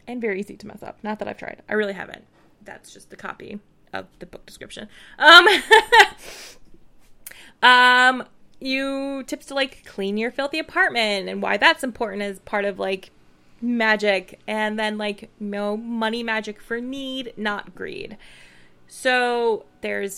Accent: American